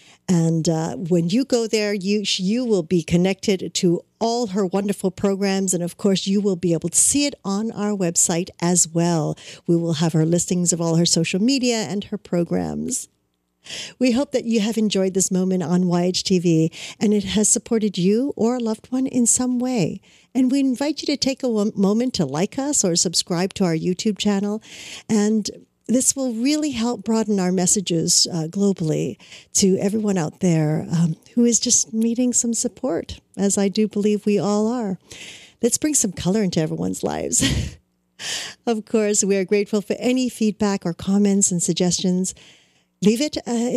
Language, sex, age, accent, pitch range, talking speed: English, female, 50-69, American, 175-230 Hz, 180 wpm